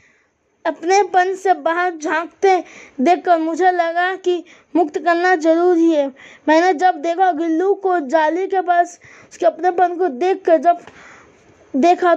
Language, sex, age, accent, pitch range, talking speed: Hindi, female, 20-39, native, 325-365 Hz, 140 wpm